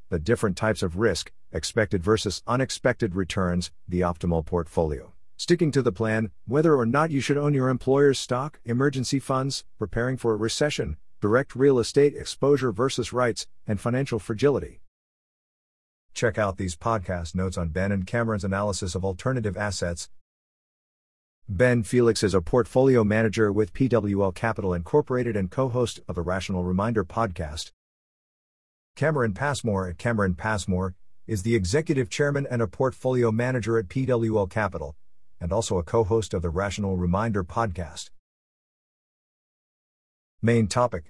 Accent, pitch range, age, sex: American, 90-125 Hz, 50-69, male